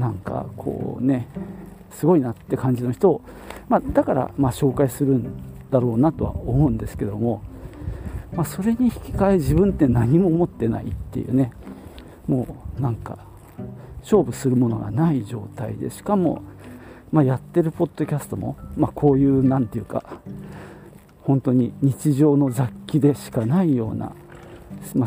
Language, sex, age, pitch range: Japanese, male, 40-59, 115-160 Hz